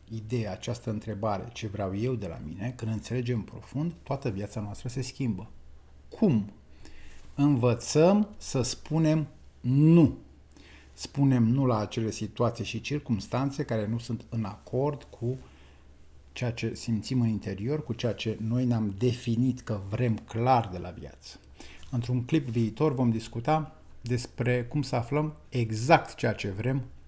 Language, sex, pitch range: Romanian, male, 100-135 Hz